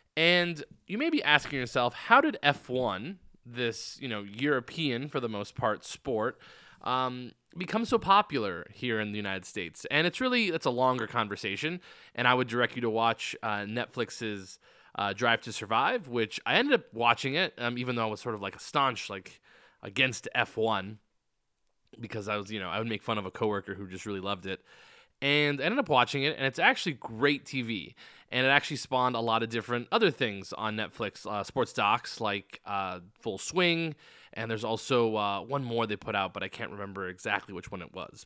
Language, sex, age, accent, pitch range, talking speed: English, male, 20-39, American, 110-145 Hz, 210 wpm